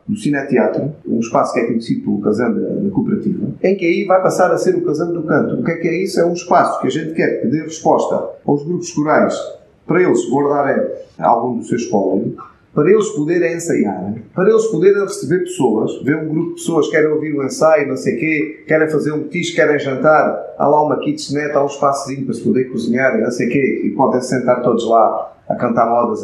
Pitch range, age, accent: 140-180 Hz, 40-59, Brazilian